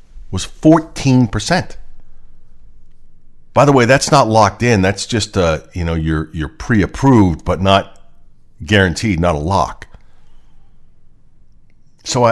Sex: male